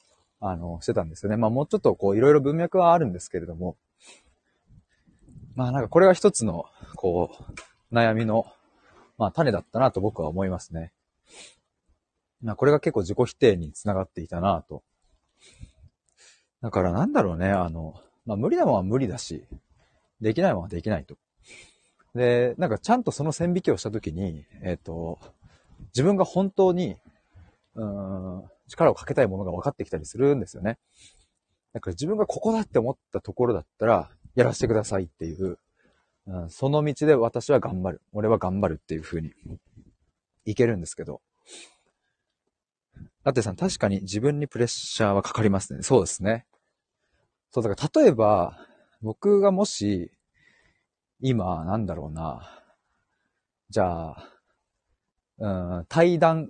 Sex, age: male, 40-59